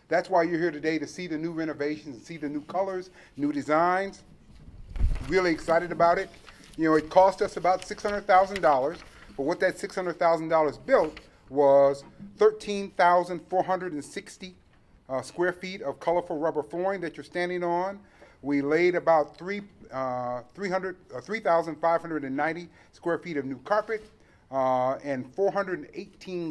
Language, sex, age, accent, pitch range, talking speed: English, male, 40-59, American, 140-180 Hz, 135 wpm